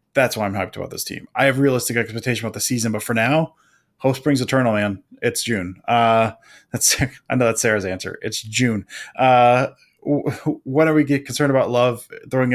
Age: 20-39